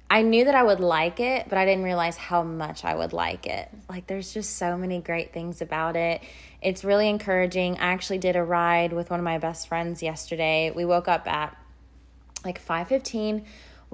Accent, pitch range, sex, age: American, 160-190 Hz, female, 20-39